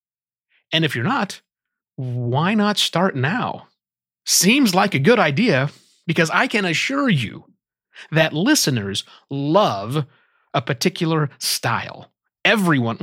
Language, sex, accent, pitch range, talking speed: English, male, American, 130-180 Hz, 115 wpm